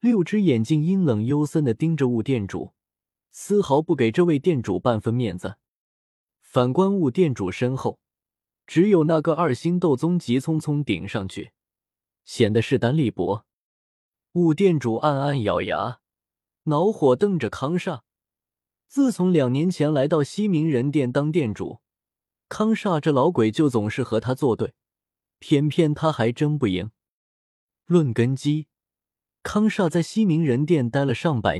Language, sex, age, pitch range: Chinese, male, 20-39, 115-175 Hz